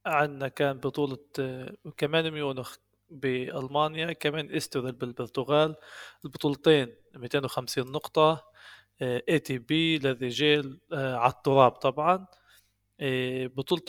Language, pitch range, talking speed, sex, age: Arabic, 120-145 Hz, 80 wpm, male, 20-39